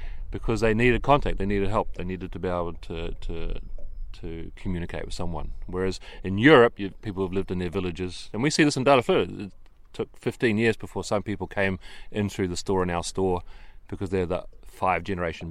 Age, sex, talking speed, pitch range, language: 30-49, male, 205 wpm, 90-110 Hz, English